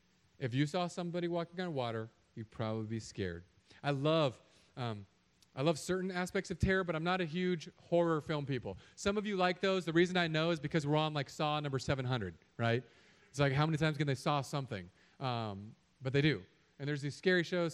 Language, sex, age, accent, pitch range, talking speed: English, male, 40-59, American, 115-150 Hz, 215 wpm